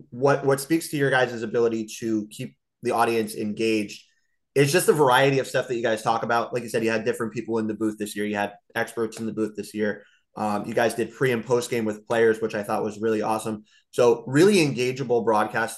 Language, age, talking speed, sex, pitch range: English, 20-39, 240 wpm, male, 105-120 Hz